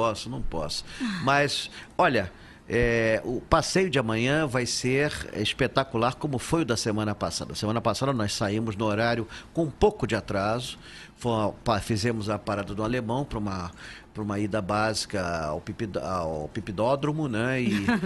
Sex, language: male, Portuguese